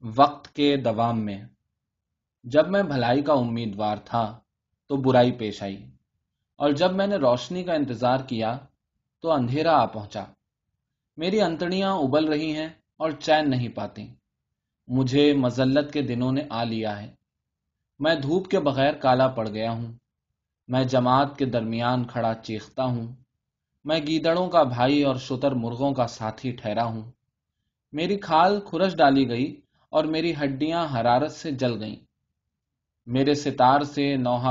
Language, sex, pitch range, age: Urdu, male, 115-145 Hz, 20-39